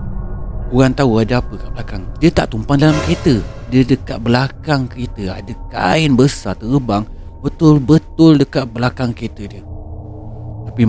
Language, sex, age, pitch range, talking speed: Indonesian, male, 30-49, 105-130 Hz, 140 wpm